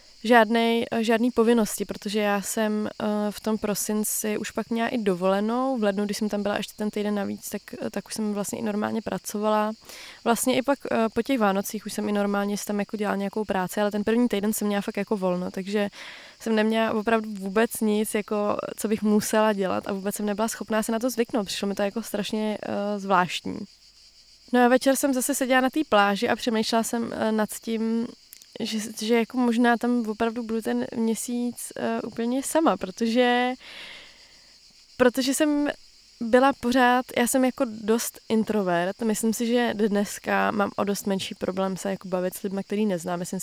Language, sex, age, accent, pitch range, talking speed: Czech, female, 20-39, native, 200-235 Hz, 195 wpm